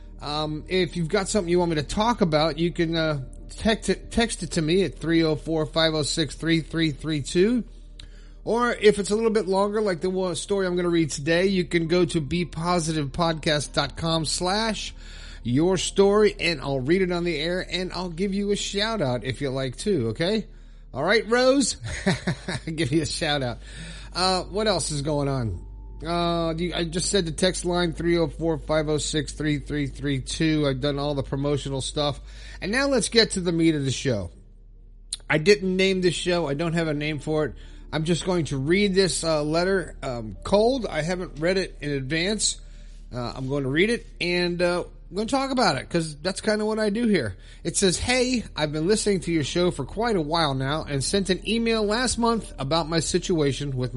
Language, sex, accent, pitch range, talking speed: English, male, American, 145-190 Hz, 195 wpm